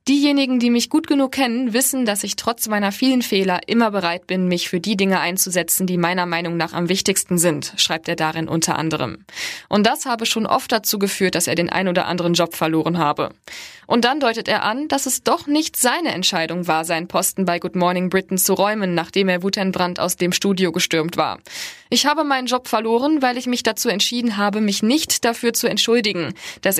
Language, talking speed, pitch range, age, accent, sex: German, 210 wpm, 175-225 Hz, 20-39, German, female